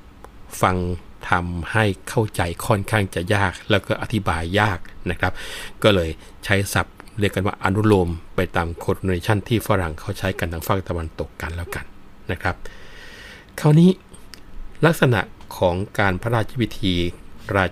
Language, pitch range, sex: Thai, 85-100 Hz, male